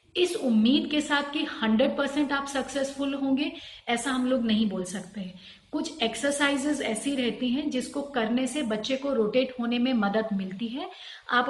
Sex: female